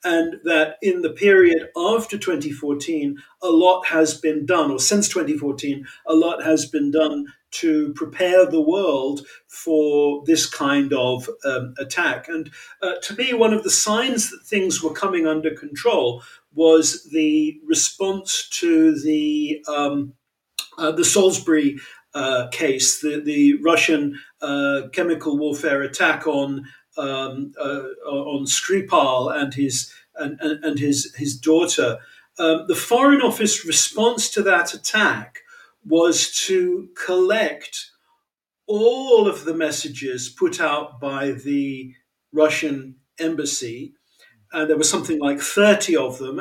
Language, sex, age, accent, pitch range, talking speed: English, male, 50-69, British, 145-205 Hz, 135 wpm